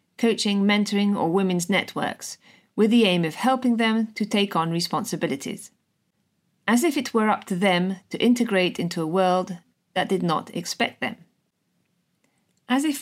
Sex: female